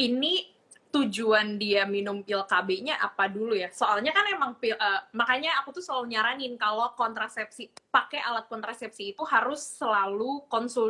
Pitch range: 210-260 Hz